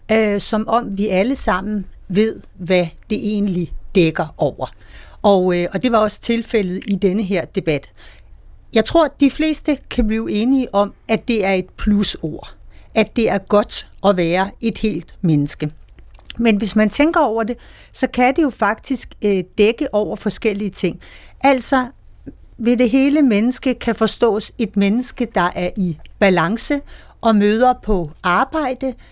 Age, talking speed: 60-79, 155 wpm